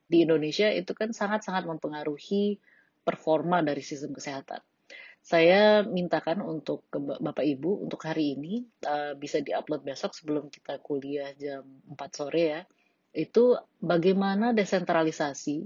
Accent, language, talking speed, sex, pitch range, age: Indonesian, English, 120 wpm, female, 145-185 Hz, 30-49